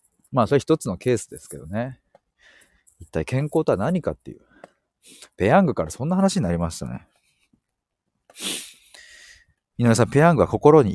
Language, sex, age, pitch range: Japanese, male, 40-59, 95-140 Hz